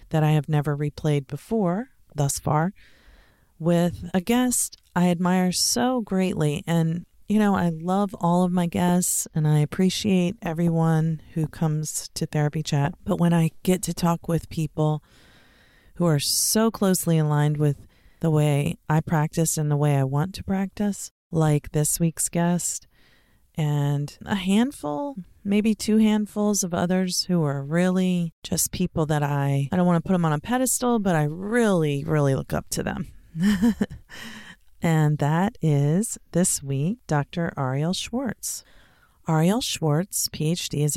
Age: 30-49